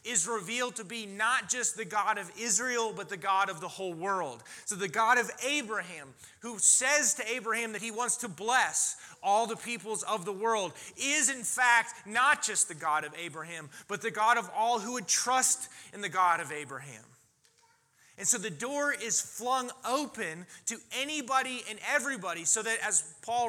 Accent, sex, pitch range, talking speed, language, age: American, male, 190-240 Hz, 190 wpm, English, 30-49